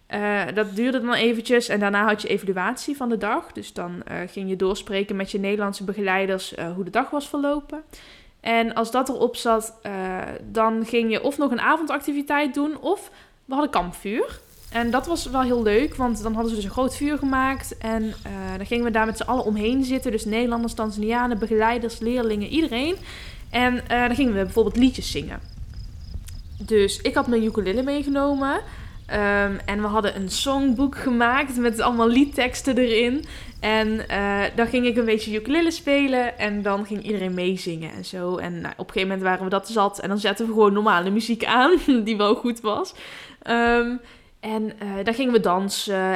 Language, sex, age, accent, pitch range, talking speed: Dutch, female, 10-29, Dutch, 200-255 Hz, 195 wpm